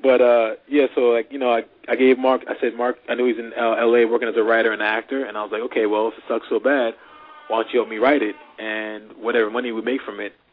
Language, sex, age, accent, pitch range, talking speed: English, male, 20-39, American, 110-130 Hz, 300 wpm